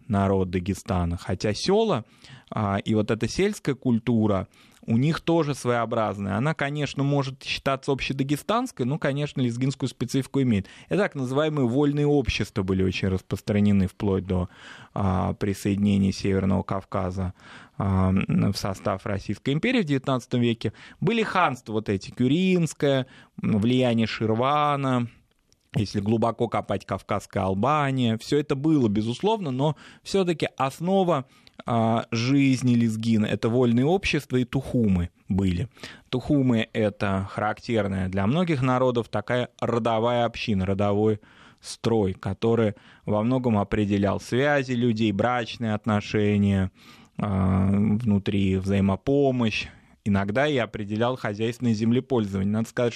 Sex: male